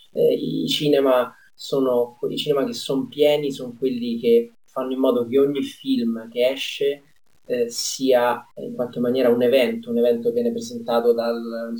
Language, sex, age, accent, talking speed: Italian, male, 30-49, native, 175 wpm